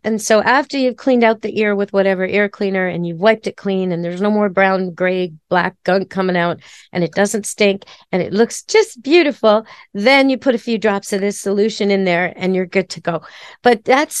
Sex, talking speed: female, 230 wpm